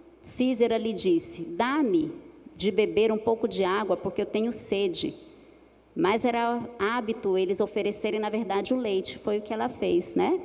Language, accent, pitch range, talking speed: Portuguese, Brazilian, 190-255 Hz, 165 wpm